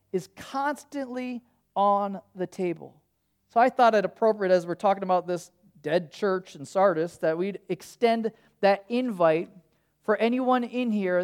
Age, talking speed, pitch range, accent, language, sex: 40-59, 150 wpm, 180-245 Hz, American, English, male